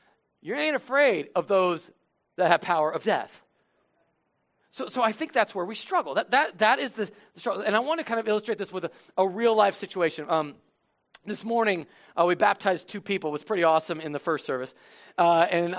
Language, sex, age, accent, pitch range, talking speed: English, male, 40-59, American, 155-205 Hz, 210 wpm